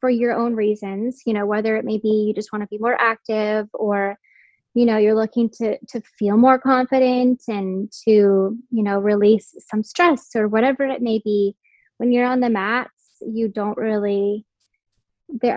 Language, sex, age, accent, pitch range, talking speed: English, female, 10-29, American, 210-255 Hz, 185 wpm